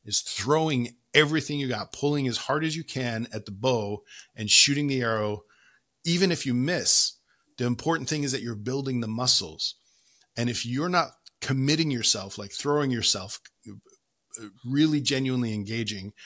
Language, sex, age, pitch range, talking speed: English, male, 40-59, 110-135 Hz, 160 wpm